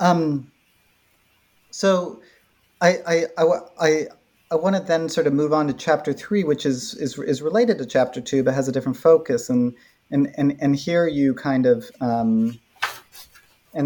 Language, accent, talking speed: English, American, 170 wpm